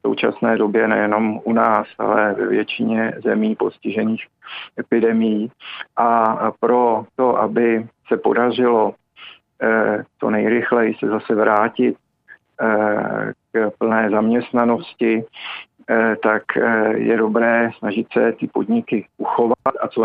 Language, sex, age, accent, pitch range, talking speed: Czech, male, 50-69, native, 110-115 Hz, 115 wpm